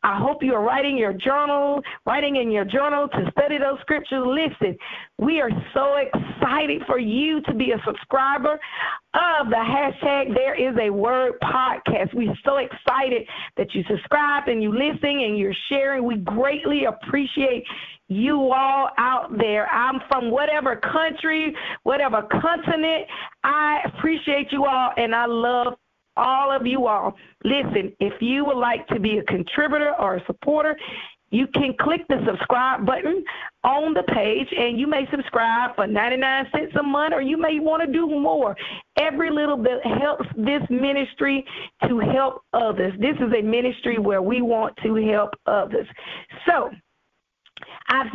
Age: 40-59